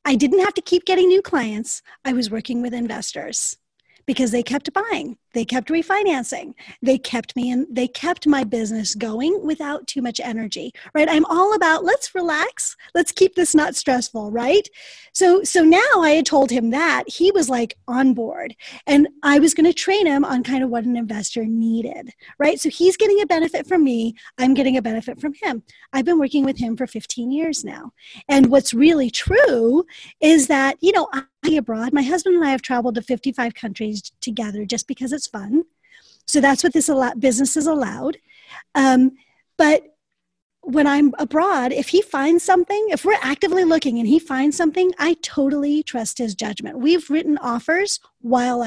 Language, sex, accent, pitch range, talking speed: English, female, American, 245-330 Hz, 190 wpm